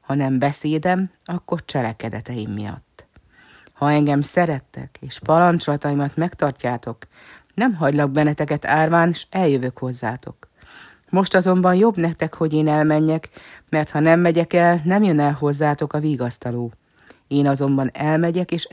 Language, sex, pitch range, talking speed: Hungarian, female, 140-165 Hz, 130 wpm